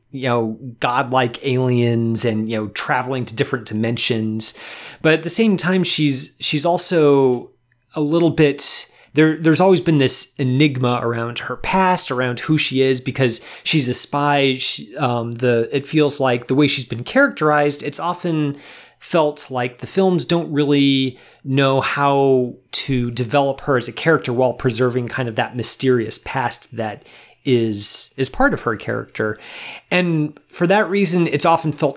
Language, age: English, 30-49